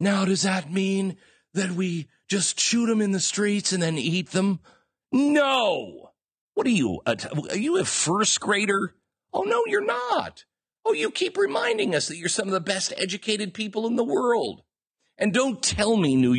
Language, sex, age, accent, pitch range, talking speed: English, male, 50-69, American, 170-265 Hz, 185 wpm